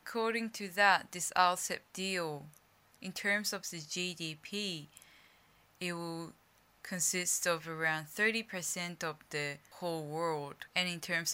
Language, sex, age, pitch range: Japanese, female, 10-29, 160-195 Hz